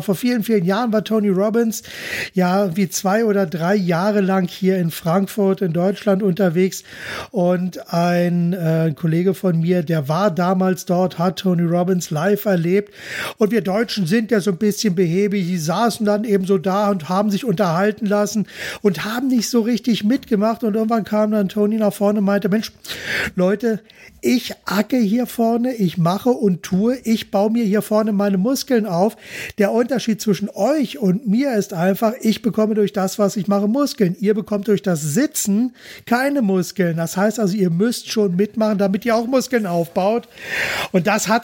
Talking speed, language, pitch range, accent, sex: 185 wpm, German, 180-215 Hz, German, male